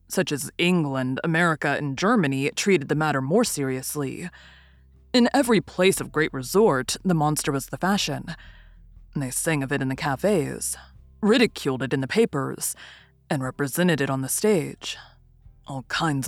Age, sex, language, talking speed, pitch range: 20-39, female, English, 155 wpm, 135-175 Hz